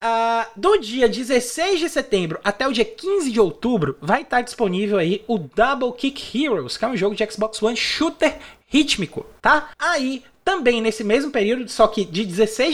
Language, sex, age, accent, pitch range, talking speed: Portuguese, male, 20-39, Brazilian, 205-275 Hz, 180 wpm